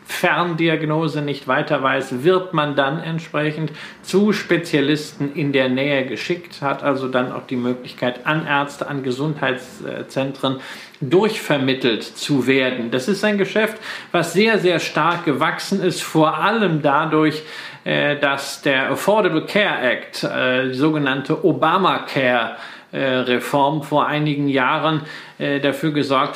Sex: male